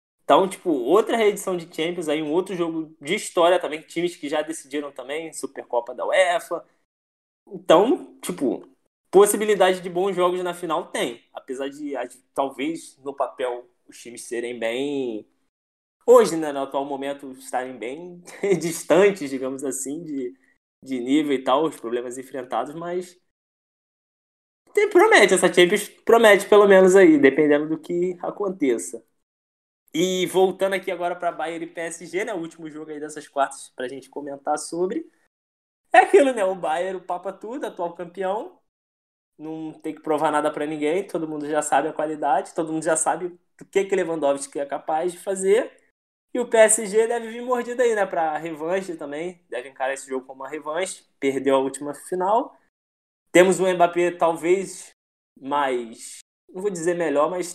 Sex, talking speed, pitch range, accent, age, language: male, 165 wpm, 140-185 Hz, Brazilian, 20-39, Portuguese